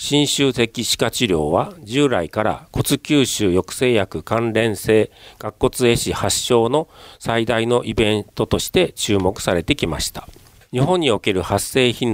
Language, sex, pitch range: Japanese, male, 100-130 Hz